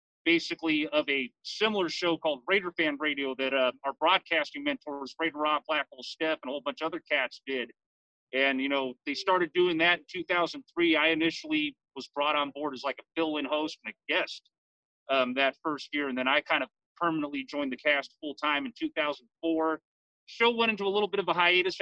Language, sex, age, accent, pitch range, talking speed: English, male, 40-59, American, 145-175 Hz, 205 wpm